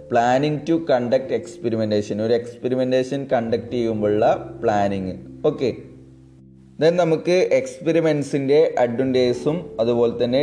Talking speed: 85 wpm